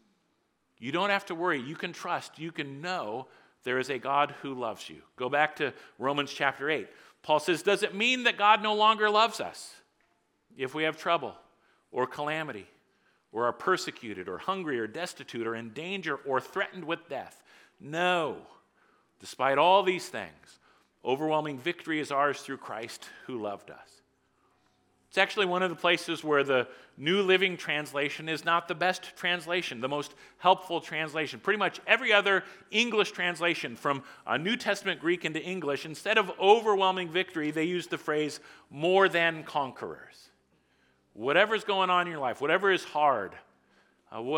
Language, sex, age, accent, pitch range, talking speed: English, male, 50-69, American, 145-185 Hz, 165 wpm